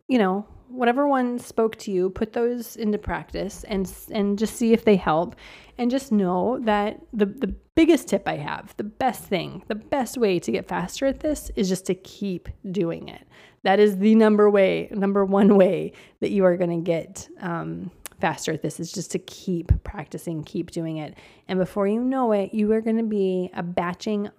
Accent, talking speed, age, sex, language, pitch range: American, 200 wpm, 20-39, female, English, 185-225 Hz